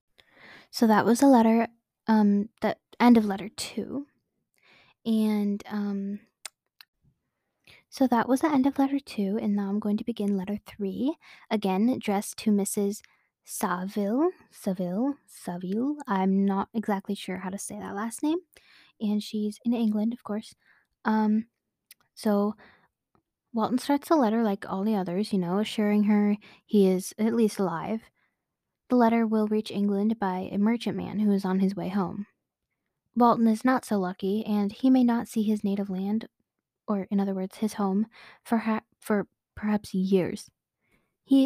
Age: 10-29